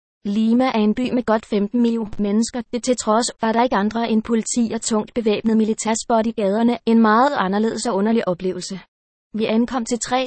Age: 20-39